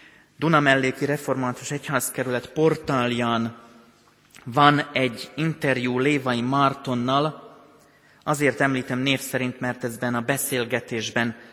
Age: 30-49